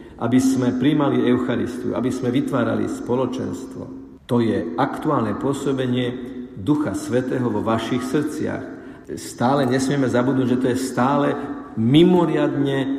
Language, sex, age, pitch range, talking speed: Slovak, male, 50-69, 115-145 Hz, 115 wpm